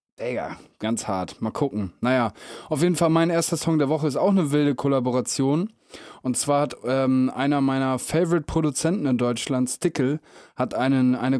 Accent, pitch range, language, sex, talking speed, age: German, 125-145 Hz, German, male, 175 wpm, 20-39